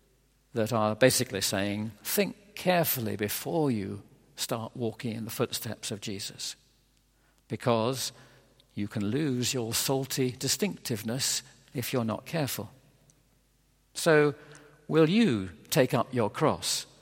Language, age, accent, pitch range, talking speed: English, 50-69, British, 105-130 Hz, 115 wpm